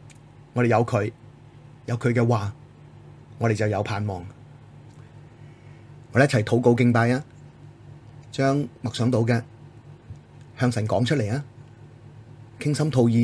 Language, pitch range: Chinese, 110-125 Hz